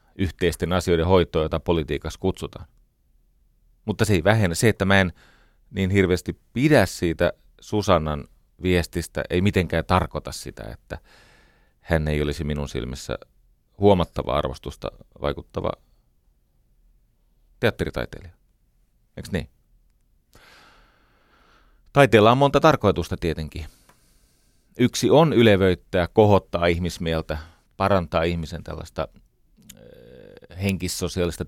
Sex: male